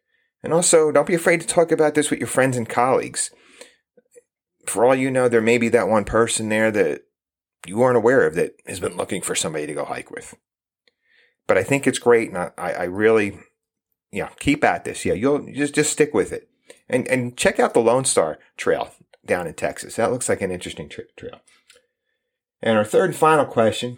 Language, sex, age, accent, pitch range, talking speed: English, male, 40-59, American, 115-170 Hz, 215 wpm